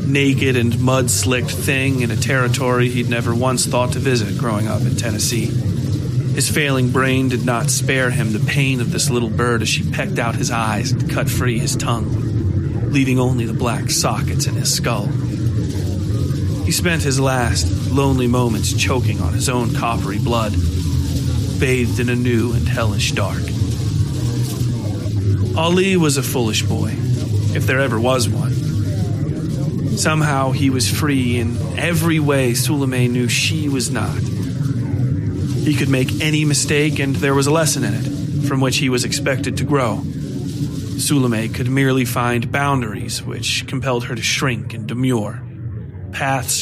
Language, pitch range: English, 115-135 Hz